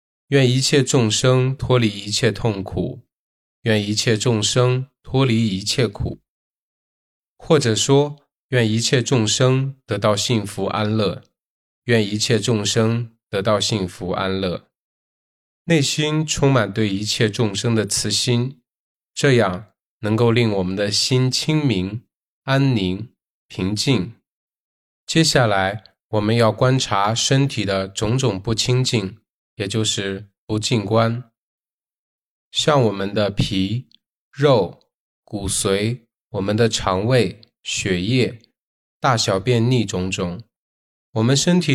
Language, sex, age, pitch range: Chinese, male, 20-39, 100-130 Hz